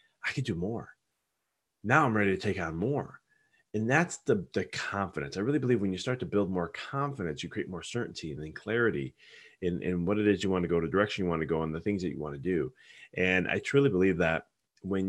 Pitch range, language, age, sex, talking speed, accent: 85-110 Hz, English, 30-49, male, 245 wpm, American